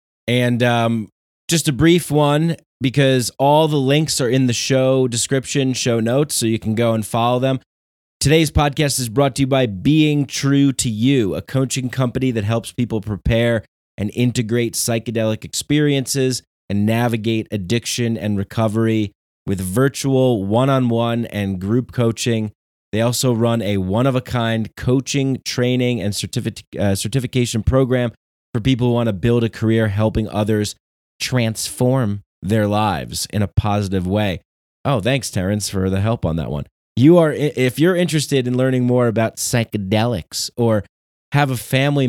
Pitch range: 100-130 Hz